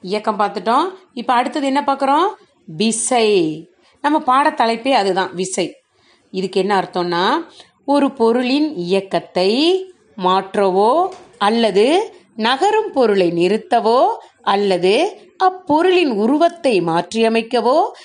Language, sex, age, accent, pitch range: Tamil, female, 30-49, native, 200-315 Hz